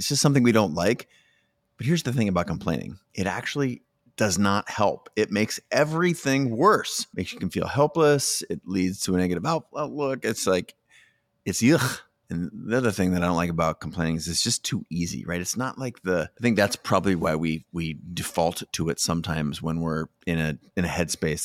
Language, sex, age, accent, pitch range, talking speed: English, male, 30-49, American, 85-120 Hz, 205 wpm